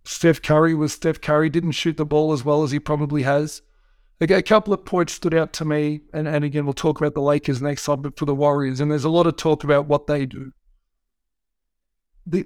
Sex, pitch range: male, 145-160 Hz